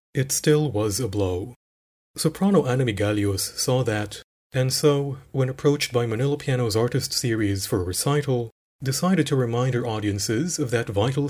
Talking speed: 160 wpm